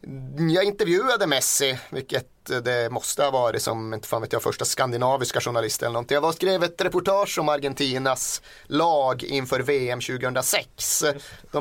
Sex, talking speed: male, 140 wpm